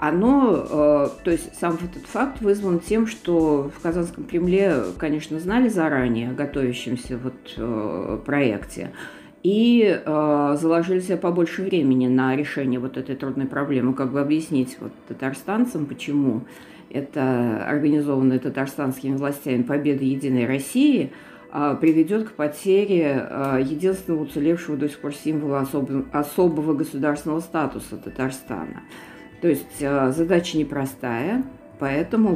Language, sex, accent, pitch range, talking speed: Russian, female, native, 135-170 Hz, 120 wpm